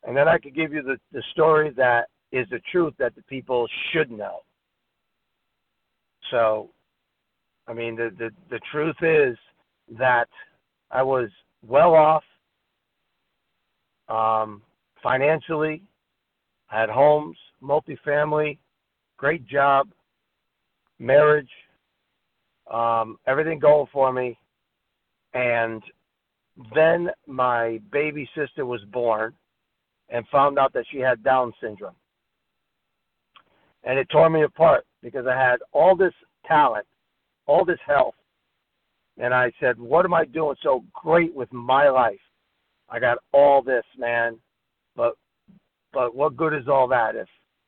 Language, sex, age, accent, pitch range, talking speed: English, male, 60-79, American, 115-150 Hz, 120 wpm